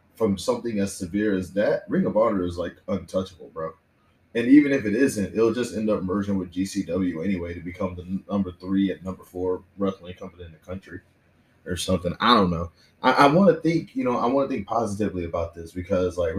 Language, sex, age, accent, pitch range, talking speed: English, male, 20-39, American, 90-110 Hz, 215 wpm